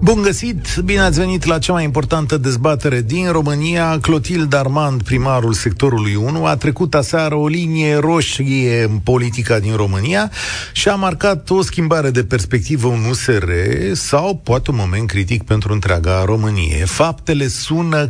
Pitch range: 115-165 Hz